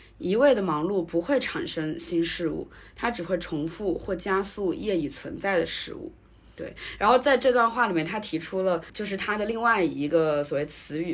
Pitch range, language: 160-195 Hz, Chinese